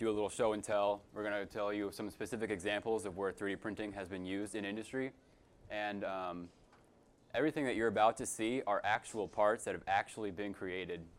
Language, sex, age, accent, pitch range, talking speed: English, male, 20-39, American, 100-115 Hz, 200 wpm